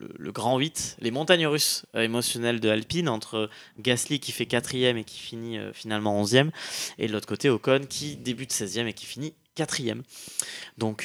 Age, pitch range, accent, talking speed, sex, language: 20-39, 110-135 Hz, French, 190 wpm, male, French